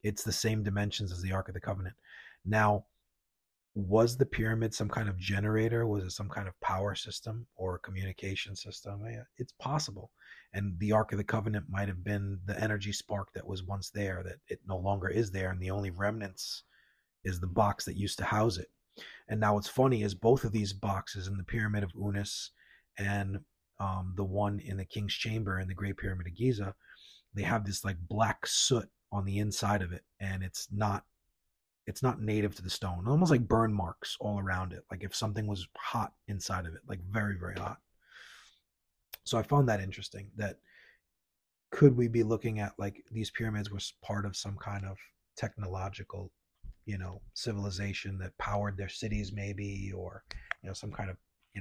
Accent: American